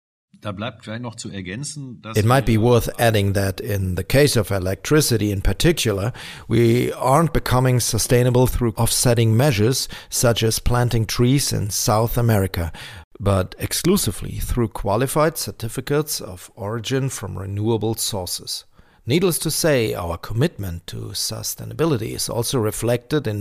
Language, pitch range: English, 100-130 Hz